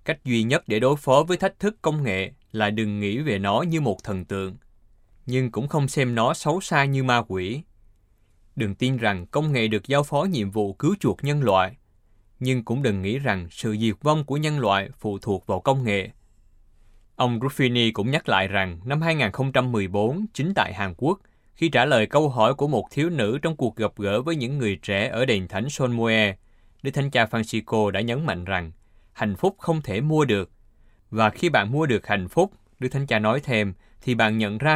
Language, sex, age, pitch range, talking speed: Vietnamese, male, 20-39, 100-135 Hz, 210 wpm